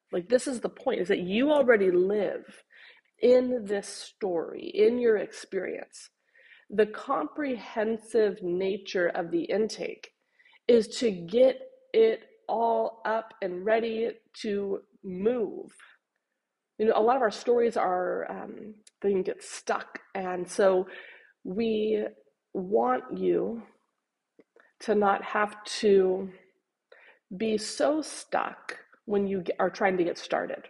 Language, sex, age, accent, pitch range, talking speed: English, female, 30-49, American, 185-250 Hz, 125 wpm